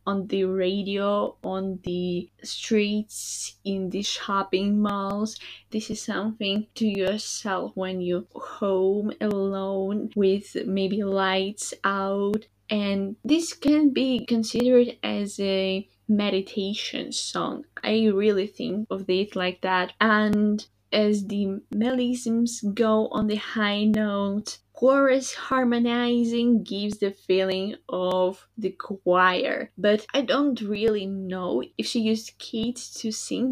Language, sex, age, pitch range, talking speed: English, female, 20-39, 195-225 Hz, 120 wpm